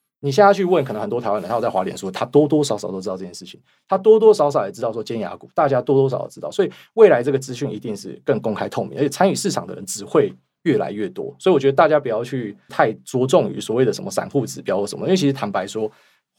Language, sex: Chinese, male